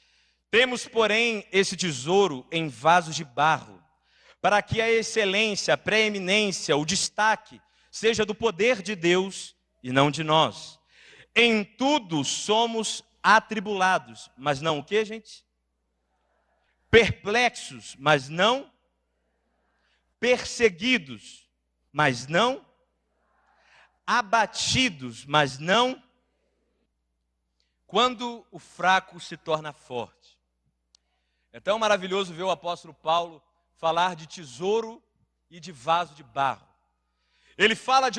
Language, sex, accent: Portuguese, male, Brazilian